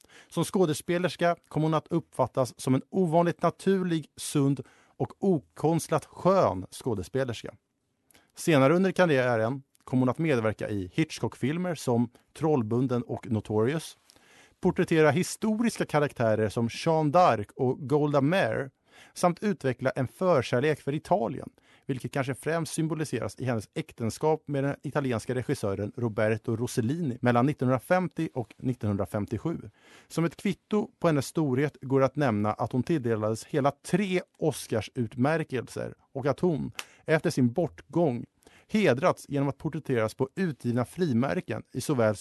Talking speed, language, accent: 130 wpm, Swedish, Norwegian